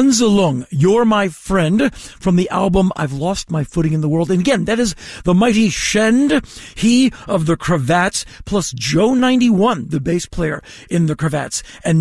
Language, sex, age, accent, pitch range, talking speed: English, male, 50-69, American, 165-210 Hz, 175 wpm